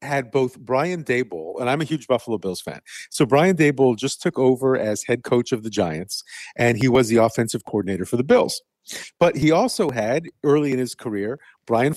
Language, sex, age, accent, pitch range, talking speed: English, male, 50-69, American, 125-170 Hz, 205 wpm